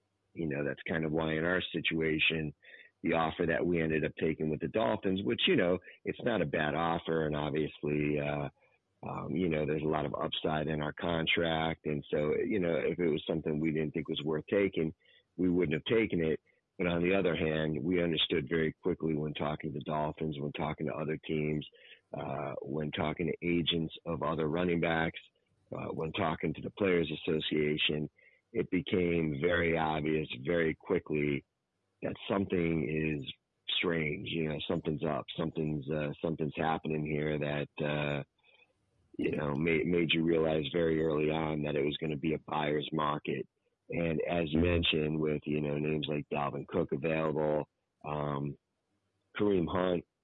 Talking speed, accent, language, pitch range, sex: 180 wpm, American, English, 75-85 Hz, male